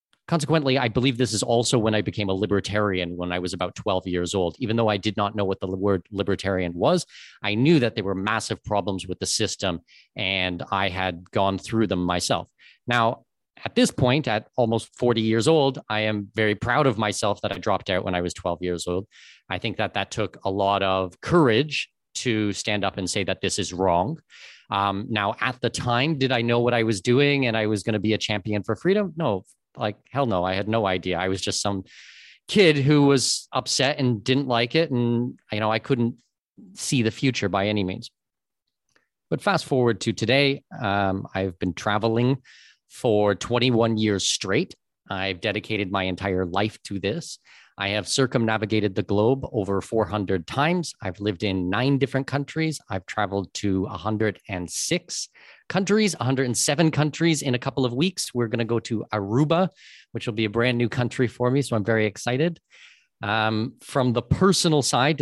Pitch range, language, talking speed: 100-125 Hz, English, 195 wpm